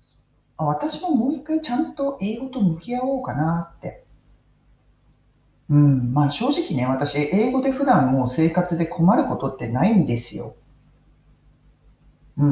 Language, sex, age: Japanese, male, 40-59